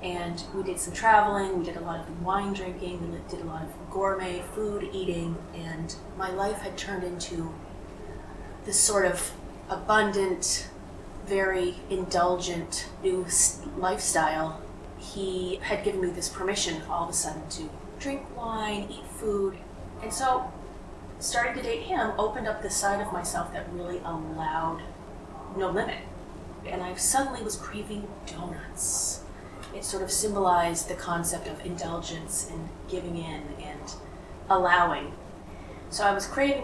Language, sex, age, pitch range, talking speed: English, female, 30-49, 170-205 Hz, 145 wpm